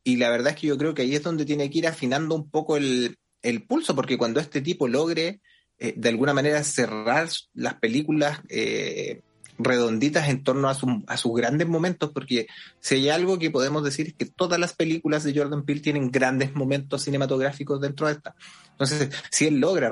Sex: male